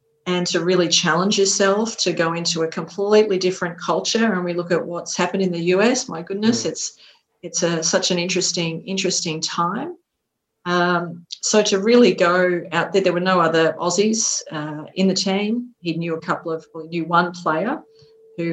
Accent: Australian